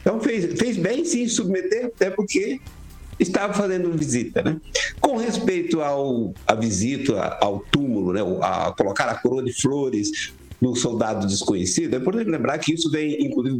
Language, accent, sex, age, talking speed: Portuguese, Brazilian, male, 60-79, 160 wpm